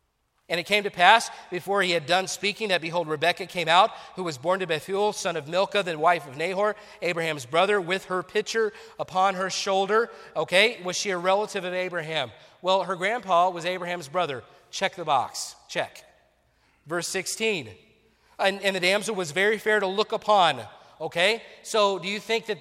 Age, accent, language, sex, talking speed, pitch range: 40-59, American, English, male, 185 wpm, 175-210 Hz